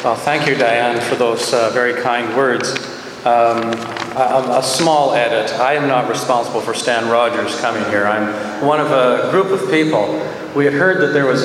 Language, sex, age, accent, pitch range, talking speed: English, male, 50-69, American, 115-150 Hz, 195 wpm